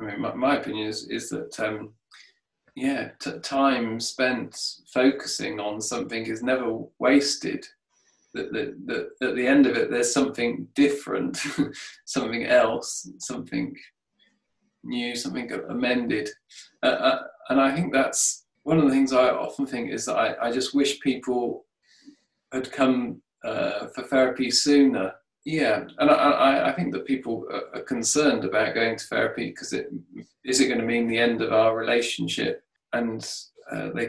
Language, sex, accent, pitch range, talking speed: English, male, British, 120-155 Hz, 160 wpm